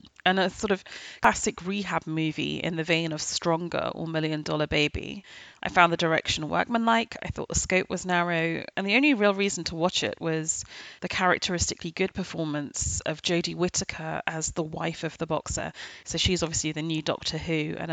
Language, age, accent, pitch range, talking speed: English, 30-49, British, 160-195 Hz, 190 wpm